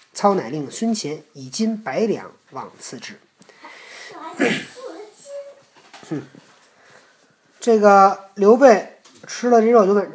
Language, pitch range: Chinese, 165-235 Hz